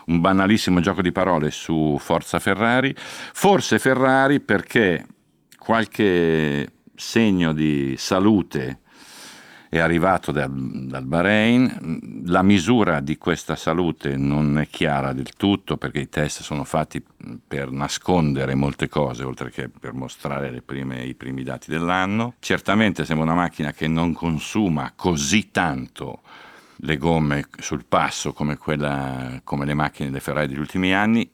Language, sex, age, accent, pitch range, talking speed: Italian, male, 50-69, native, 70-90 Hz, 140 wpm